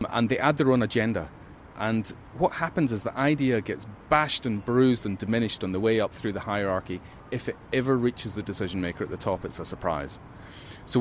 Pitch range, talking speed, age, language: 105-135 Hz, 215 wpm, 30-49, English